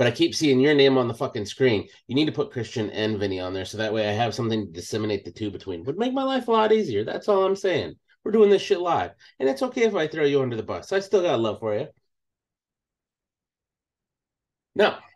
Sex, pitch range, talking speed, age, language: male, 105-140 Hz, 250 wpm, 30-49, English